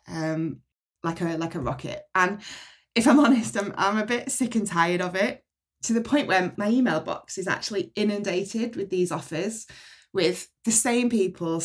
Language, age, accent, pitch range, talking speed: English, 20-39, British, 155-220 Hz, 185 wpm